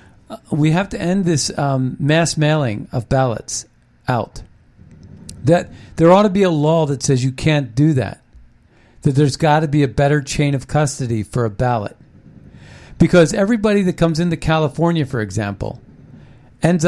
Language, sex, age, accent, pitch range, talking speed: English, male, 50-69, American, 130-190 Hz, 165 wpm